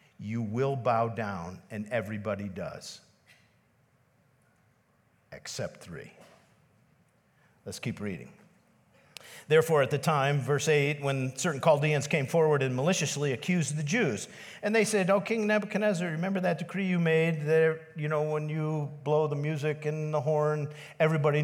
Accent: American